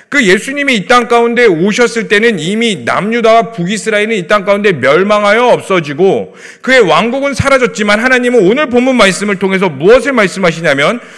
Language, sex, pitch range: Korean, male, 200-255 Hz